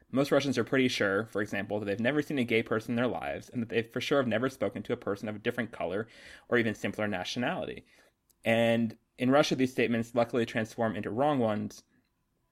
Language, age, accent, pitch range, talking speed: English, 30-49, American, 105-125 Hz, 220 wpm